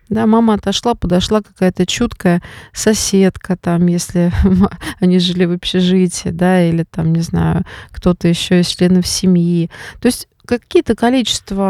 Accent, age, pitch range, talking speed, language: native, 30-49, 180-215 Hz, 140 wpm, Russian